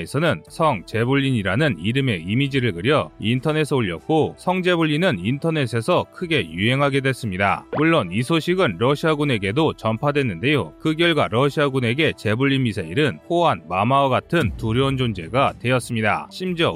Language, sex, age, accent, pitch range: Korean, male, 30-49, native, 120-160 Hz